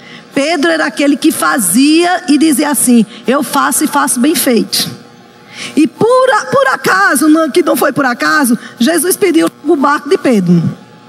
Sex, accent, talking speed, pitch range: female, Brazilian, 155 wpm, 245-320 Hz